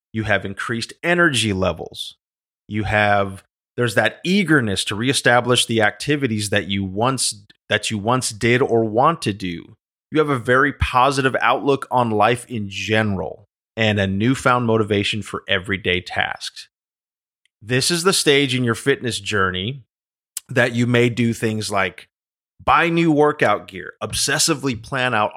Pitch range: 105-135 Hz